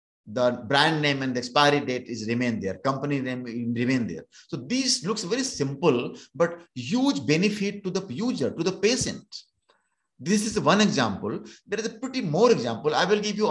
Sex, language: male, Hindi